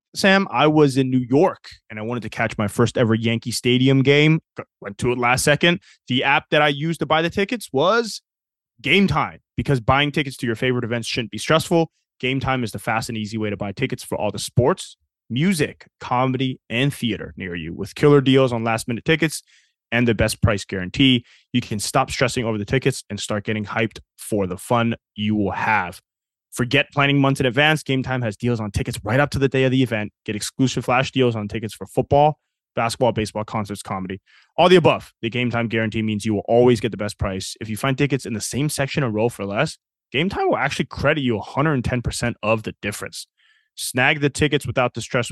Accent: American